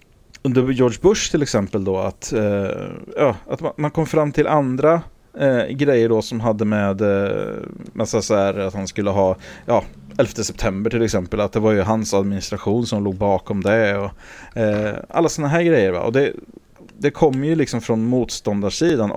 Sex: male